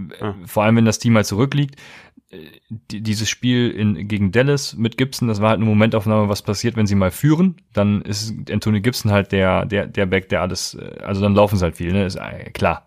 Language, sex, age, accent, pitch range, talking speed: German, male, 30-49, German, 100-125 Hz, 215 wpm